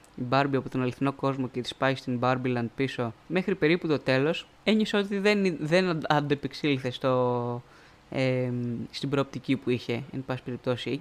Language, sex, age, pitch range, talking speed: Greek, female, 20-39, 130-170 Hz, 160 wpm